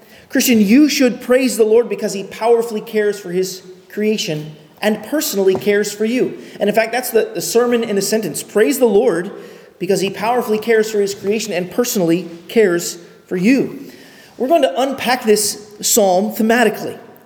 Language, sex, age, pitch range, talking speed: English, male, 30-49, 180-225 Hz, 175 wpm